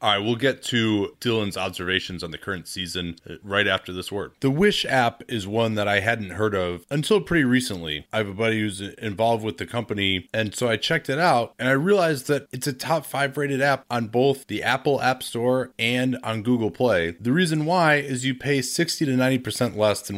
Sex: male